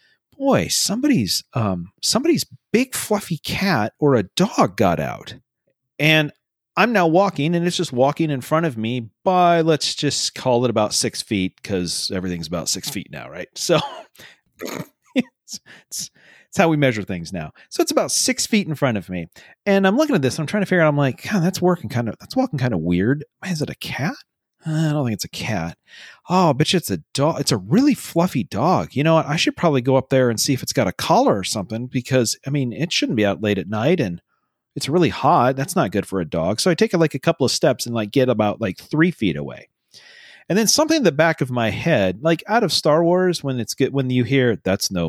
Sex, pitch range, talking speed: male, 115-175 Hz, 235 wpm